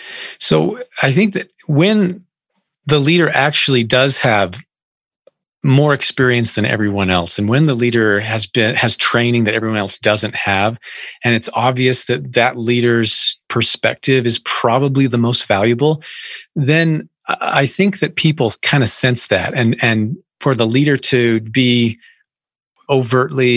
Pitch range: 110-135 Hz